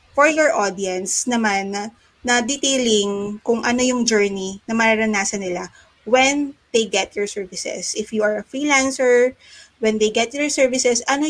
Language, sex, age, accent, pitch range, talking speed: English, female, 20-39, Filipino, 205-250 Hz, 155 wpm